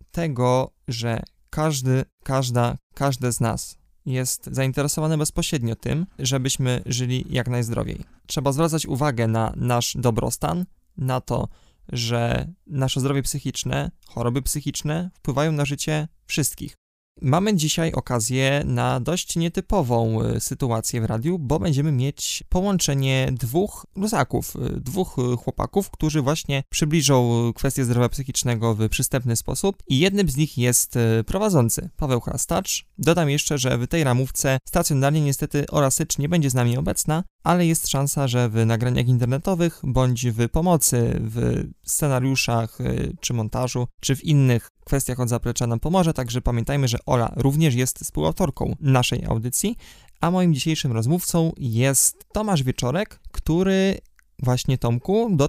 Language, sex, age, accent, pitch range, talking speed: Polish, male, 20-39, native, 125-160 Hz, 135 wpm